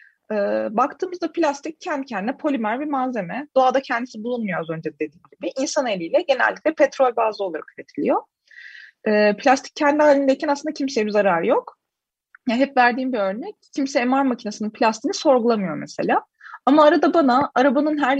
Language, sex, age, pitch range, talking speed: Turkish, female, 30-49, 205-280 Hz, 145 wpm